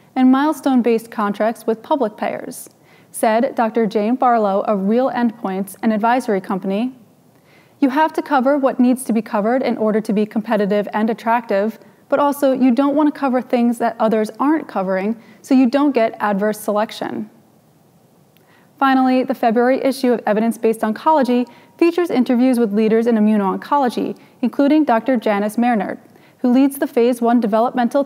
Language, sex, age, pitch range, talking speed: English, female, 20-39, 215-260 Hz, 155 wpm